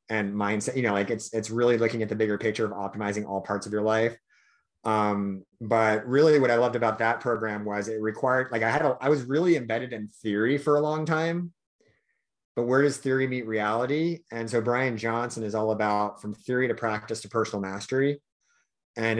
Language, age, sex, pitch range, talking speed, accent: English, 30-49, male, 100-115 Hz, 205 wpm, American